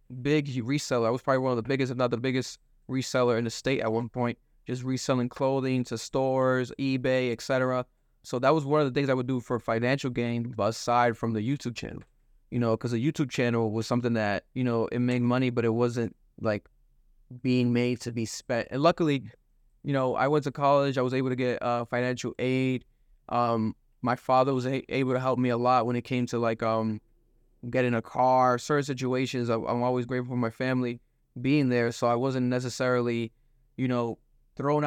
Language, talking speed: English, 210 wpm